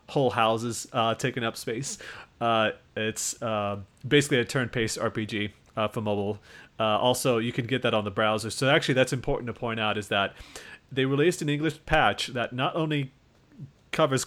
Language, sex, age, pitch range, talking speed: English, male, 30-49, 110-130 Hz, 180 wpm